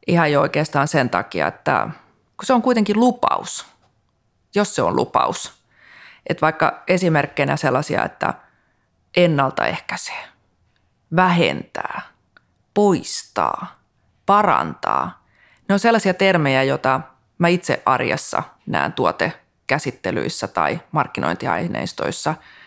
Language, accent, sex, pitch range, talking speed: Finnish, native, female, 145-185 Hz, 95 wpm